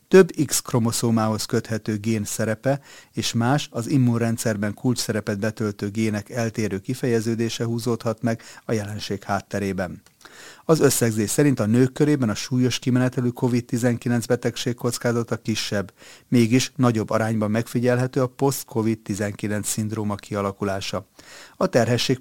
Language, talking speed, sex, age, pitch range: Hungarian, 120 wpm, male, 30-49, 105-125 Hz